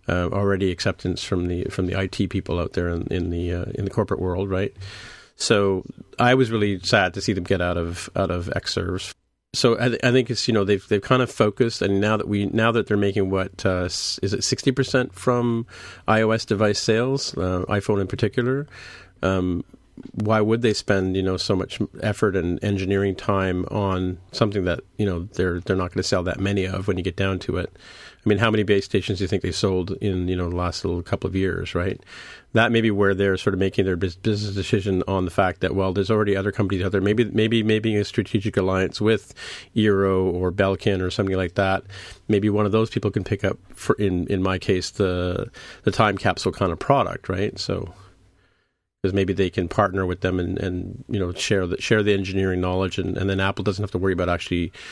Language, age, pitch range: English, 40-59, 95-105 Hz